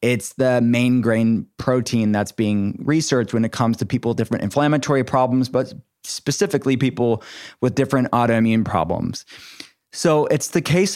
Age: 20-39